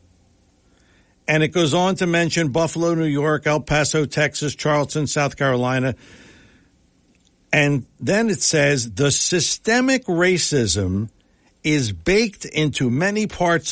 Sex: male